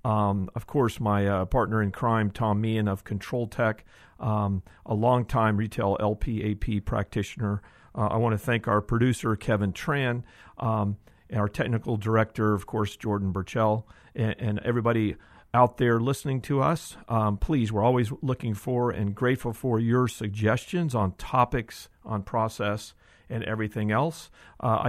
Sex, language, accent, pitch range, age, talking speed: male, English, American, 105-125 Hz, 50-69, 155 wpm